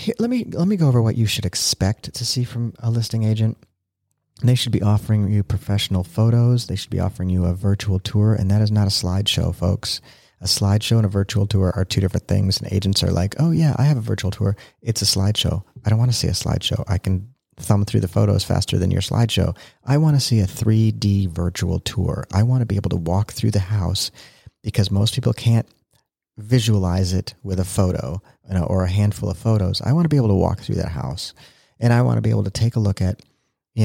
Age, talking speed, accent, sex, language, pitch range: 40-59, 235 wpm, American, male, English, 95-120 Hz